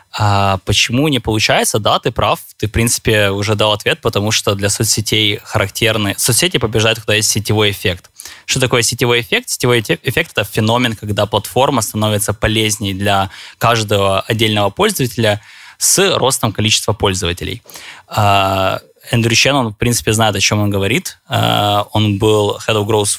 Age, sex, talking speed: 20-39, male, 155 wpm